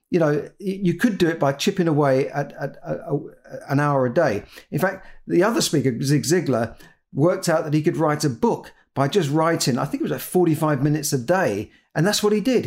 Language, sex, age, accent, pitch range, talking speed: English, male, 50-69, British, 135-170 Hz, 225 wpm